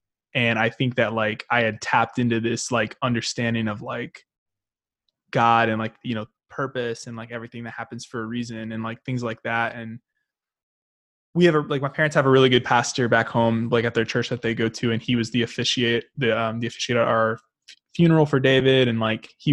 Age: 20-39